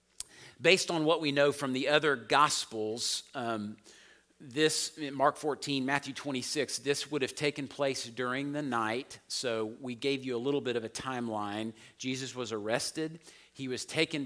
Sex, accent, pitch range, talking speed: male, American, 115-150 Hz, 165 wpm